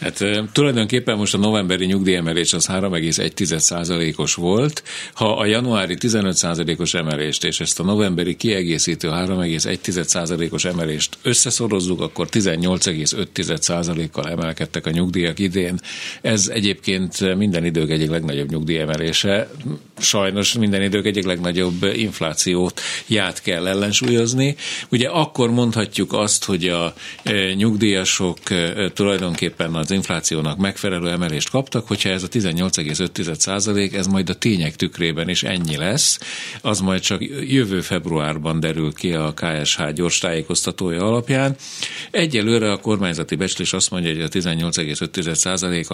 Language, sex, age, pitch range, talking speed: Hungarian, male, 50-69, 85-110 Hz, 120 wpm